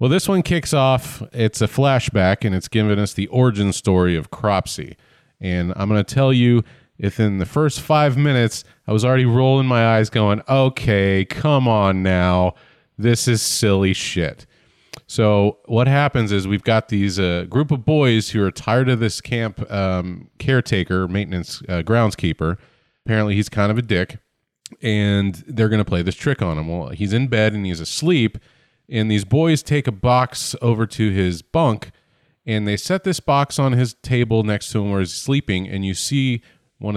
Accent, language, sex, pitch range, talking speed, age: American, English, male, 95-130 Hz, 185 wpm, 30-49